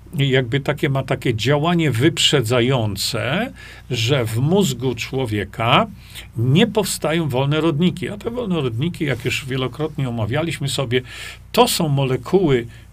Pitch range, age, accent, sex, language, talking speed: 125-165 Hz, 50-69, native, male, Polish, 120 wpm